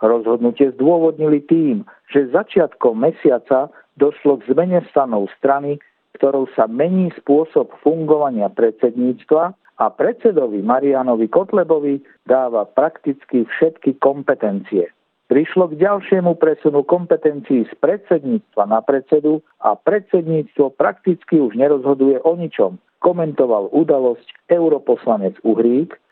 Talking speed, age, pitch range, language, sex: 105 wpm, 50-69, 135-170 Hz, Slovak, male